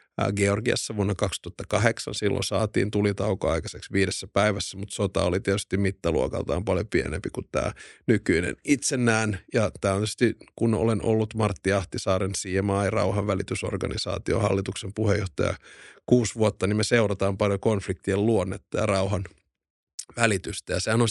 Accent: native